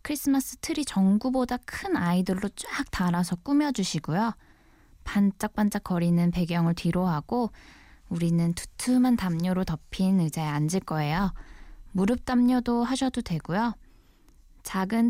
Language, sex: Korean, female